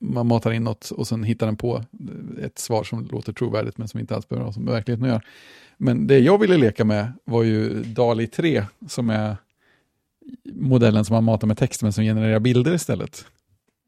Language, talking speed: Swedish, 200 wpm